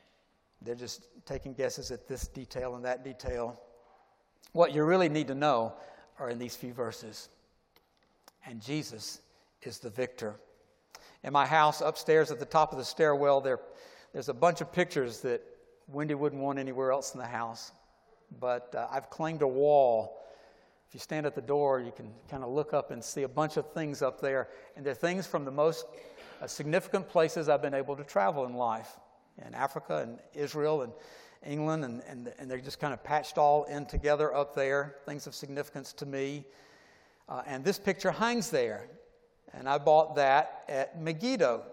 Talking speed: 185 wpm